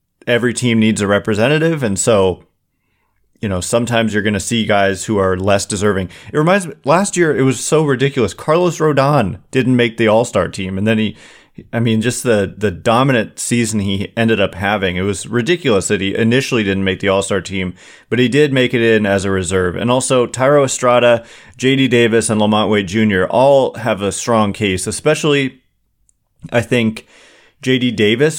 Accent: American